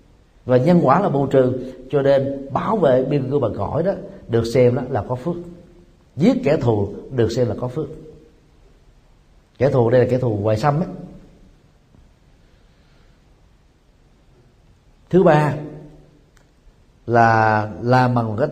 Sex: male